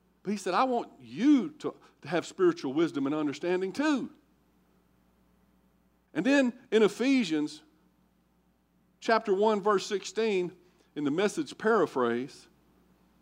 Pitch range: 145-240 Hz